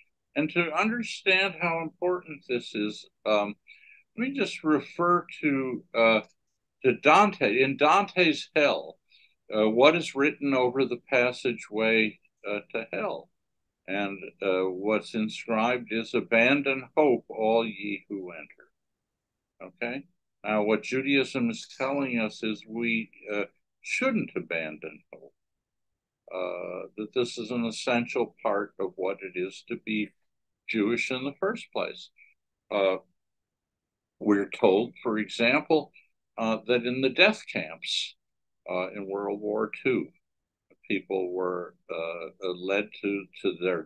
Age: 60-79